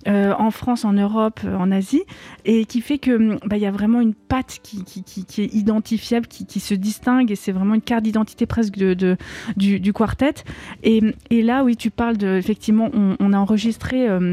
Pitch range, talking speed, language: 200-230 Hz, 200 wpm, French